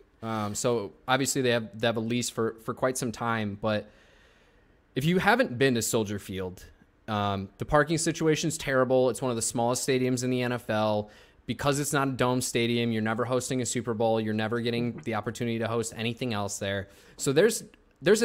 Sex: male